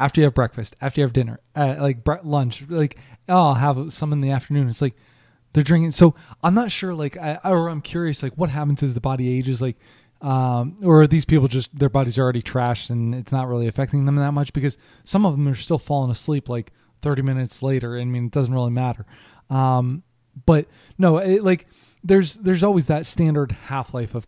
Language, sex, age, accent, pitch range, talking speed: English, male, 20-39, American, 125-150 Hz, 220 wpm